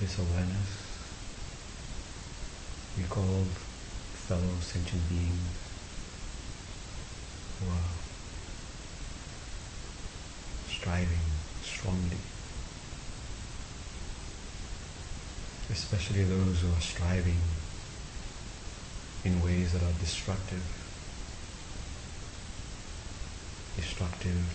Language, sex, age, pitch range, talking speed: English, male, 60-79, 85-95 Hz, 55 wpm